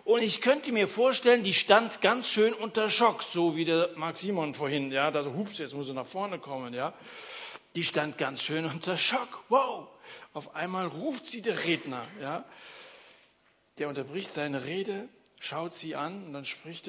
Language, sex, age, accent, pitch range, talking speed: German, male, 60-79, German, 140-205 Hz, 180 wpm